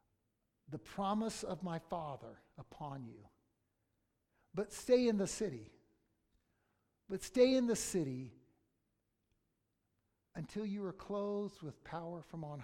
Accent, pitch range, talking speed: American, 155-235 Hz, 120 wpm